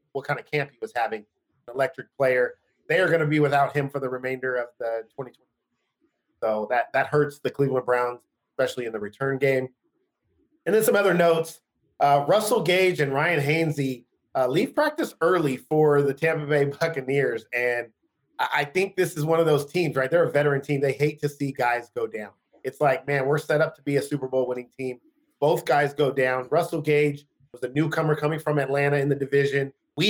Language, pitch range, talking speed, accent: English, 130-160 Hz, 210 wpm, American